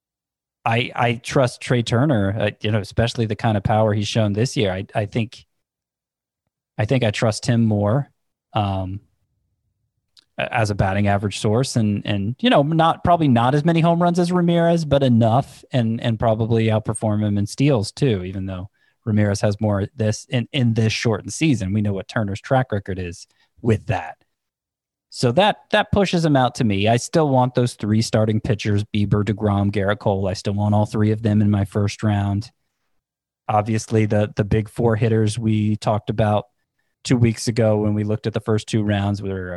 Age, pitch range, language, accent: 20-39, 105-120 Hz, English, American